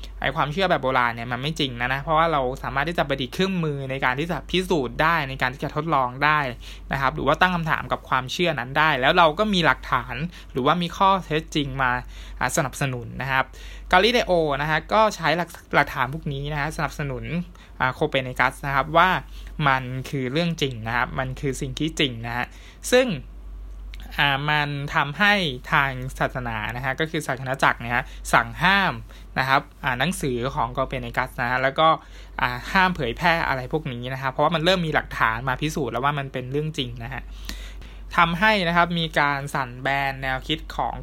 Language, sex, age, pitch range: Thai, male, 20-39, 125-160 Hz